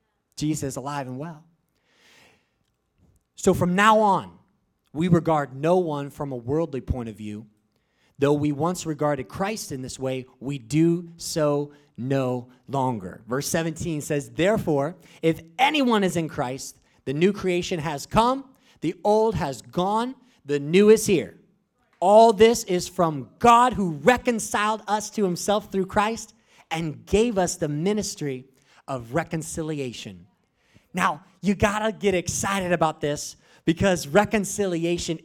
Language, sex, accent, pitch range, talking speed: English, male, American, 140-185 Hz, 140 wpm